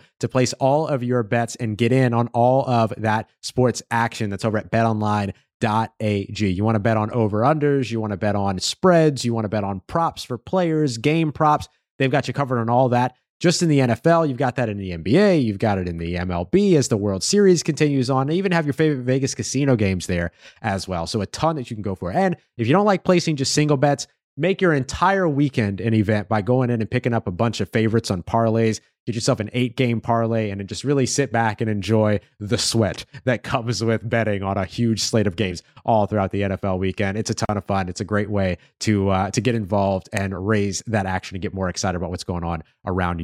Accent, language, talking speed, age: American, English, 240 wpm, 30-49